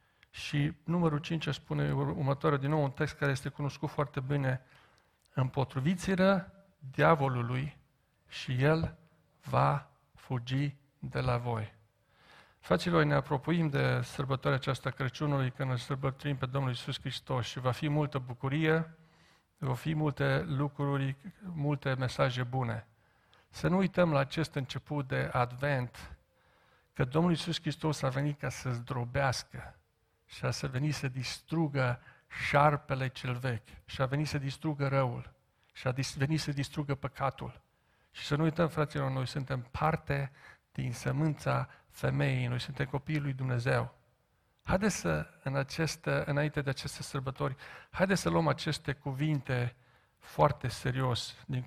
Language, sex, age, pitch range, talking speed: Romanian, male, 50-69, 130-150 Hz, 135 wpm